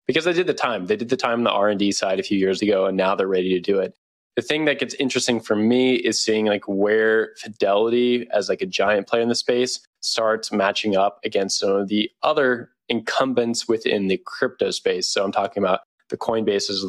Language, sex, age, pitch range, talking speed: English, male, 20-39, 100-125 Hz, 225 wpm